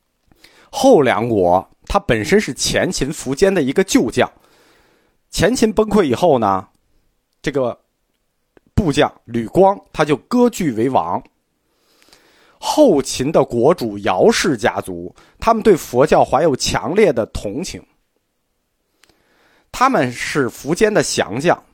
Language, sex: Chinese, male